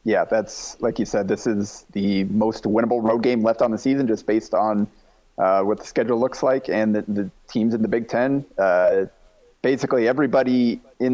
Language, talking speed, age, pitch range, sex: English, 200 wpm, 30-49, 105-125 Hz, male